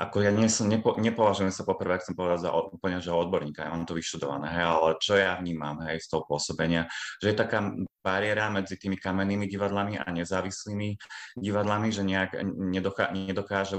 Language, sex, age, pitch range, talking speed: Slovak, male, 30-49, 85-100 Hz, 185 wpm